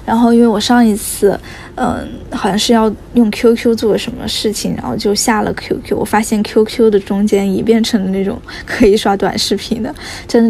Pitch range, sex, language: 200-235 Hz, female, Chinese